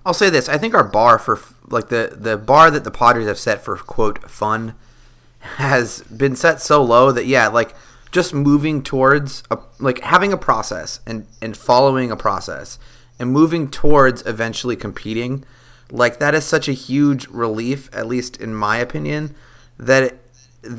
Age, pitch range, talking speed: 30-49, 105-130 Hz, 175 wpm